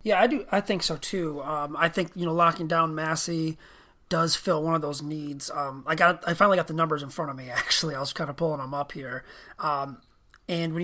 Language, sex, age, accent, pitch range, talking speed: English, male, 30-49, American, 155-180 Hz, 250 wpm